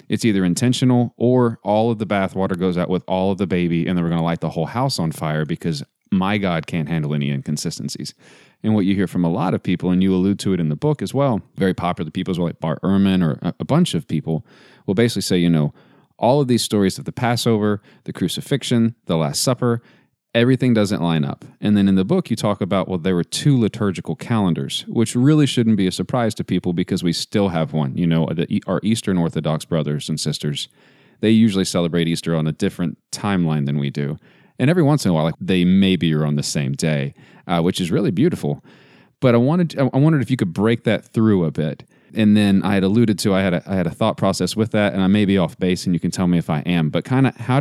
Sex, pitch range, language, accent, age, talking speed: male, 85-110 Hz, English, American, 30-49, 250 wpm